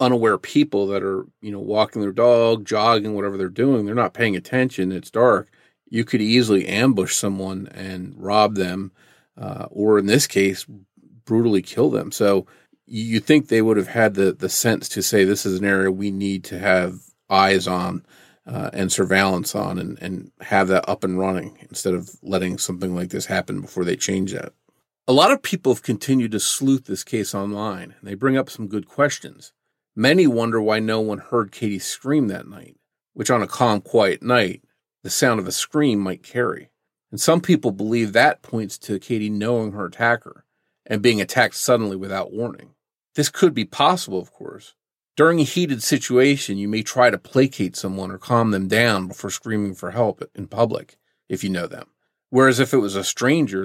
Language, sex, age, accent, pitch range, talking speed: English, male, 40-59, American, 95-120 Hz, 195 wpm